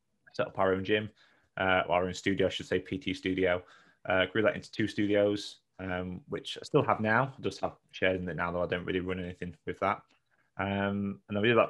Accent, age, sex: British, 20-39, male